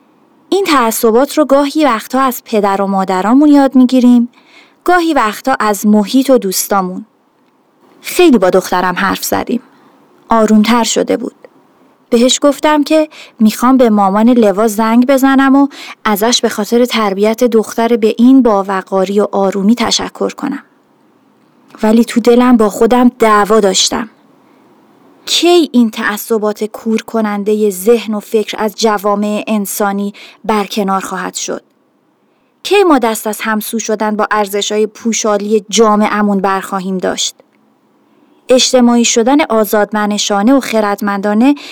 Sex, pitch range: female, 210-265 Hz